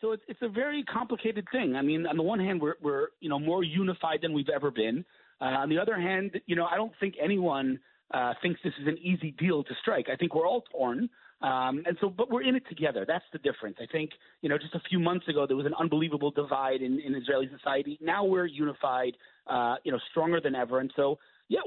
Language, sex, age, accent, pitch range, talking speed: English, male, 30-49, American, 135-175 Hz, 245 wpm